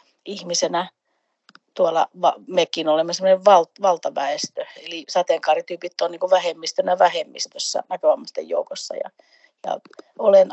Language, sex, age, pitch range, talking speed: Finnish, female, 40-59, 165-205 Hz, 95 wpm